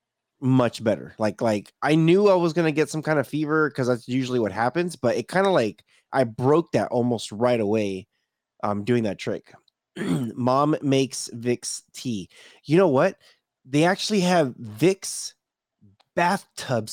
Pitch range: 115-150 Hz